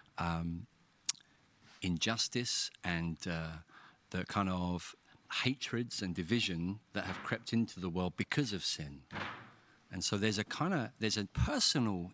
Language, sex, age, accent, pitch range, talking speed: English, male, 40-59, British, 90-115 Hz, 140 wpm